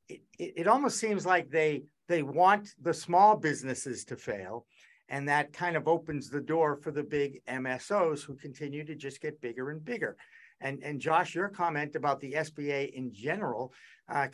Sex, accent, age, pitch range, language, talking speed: male, American, 60-79, 145-195 Hz, English, 185 wpm